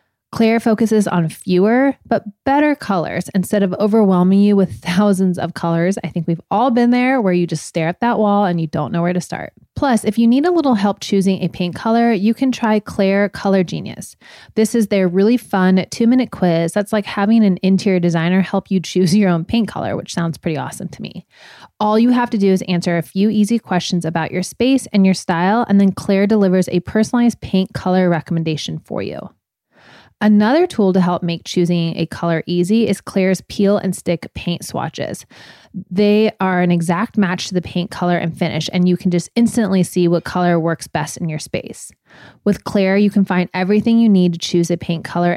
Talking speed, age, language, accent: 210 wpm, 20-39, English, American